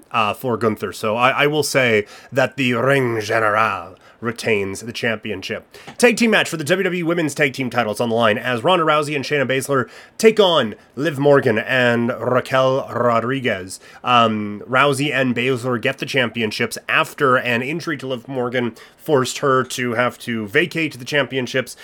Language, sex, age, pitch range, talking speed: English, male, 30-49, 120-155 Hz, 170 wpm